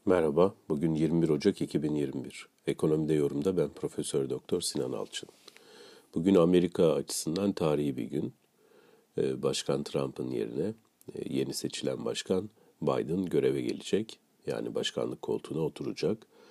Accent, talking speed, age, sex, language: native, 115 wpm, 50-69, male, Turkish